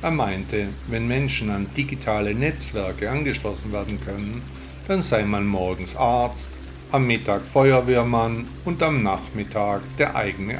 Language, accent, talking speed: German, German, 130 wpm